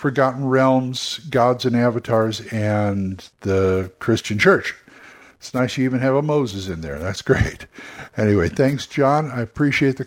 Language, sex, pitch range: English, male, 120-145 Hz